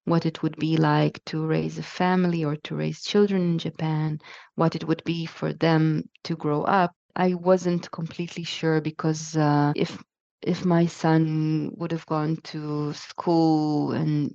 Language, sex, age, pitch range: Chinese, female, 20-39, 150-180 Hz